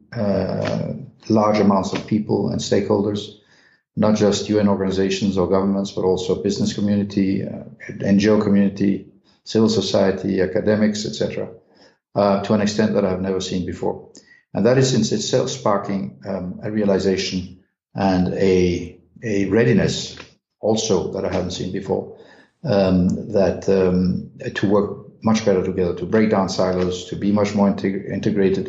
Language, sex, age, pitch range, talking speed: English, male, 50-69, 95-105 Hz, 145 wpm